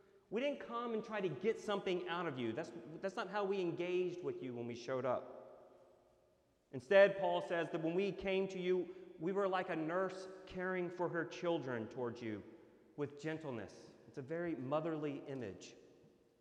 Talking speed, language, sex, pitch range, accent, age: 185 wpm, English, male, 135-185 Hz, American, 40-59